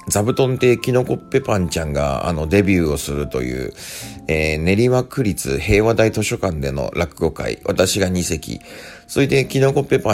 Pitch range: 80-110 Hz